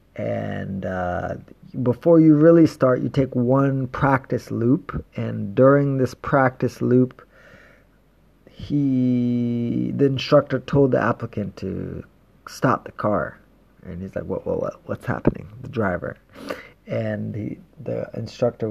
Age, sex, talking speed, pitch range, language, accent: 30-49, male, 130 wpm, 100-135 Hz, English, American